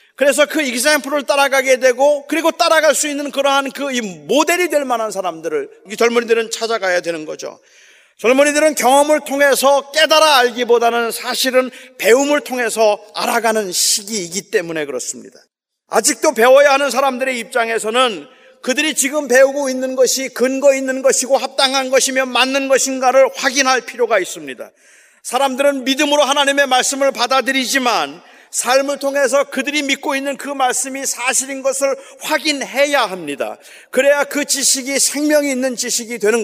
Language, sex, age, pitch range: Korean, male, 40-59, 245-285 Hz